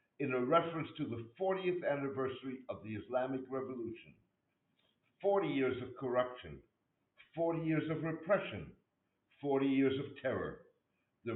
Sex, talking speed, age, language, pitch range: male, 125 wpm, 60-79, English, 115-145 Hz